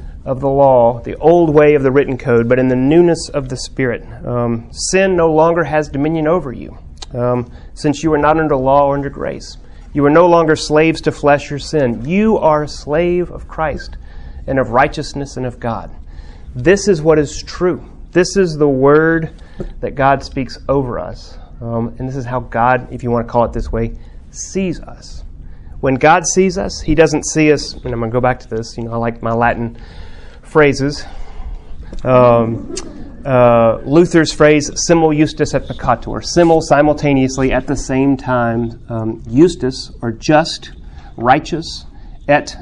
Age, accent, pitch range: 30-49, American, 115-155 Hz